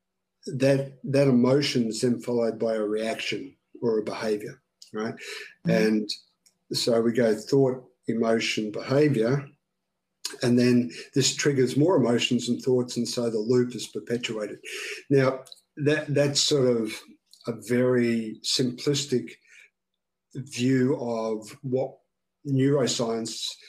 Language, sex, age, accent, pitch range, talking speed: English, male, 50-69, Australian, 115-130 Hz, 115 wpm